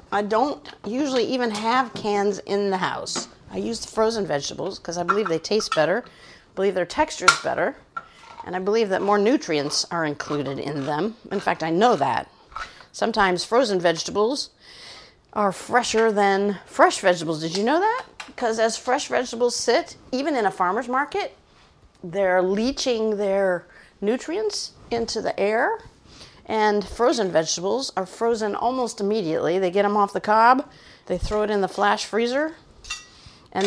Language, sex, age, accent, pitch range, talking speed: English, female, 50-69, American, 190-245 Hz, 160 wpm